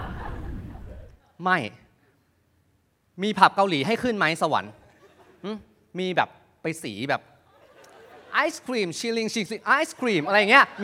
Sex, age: male, 20-39